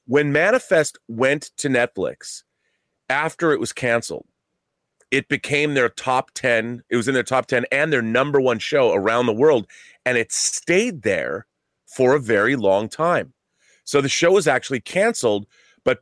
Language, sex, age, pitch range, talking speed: English, male, 30-49, 115-150 Hz, 165 wpm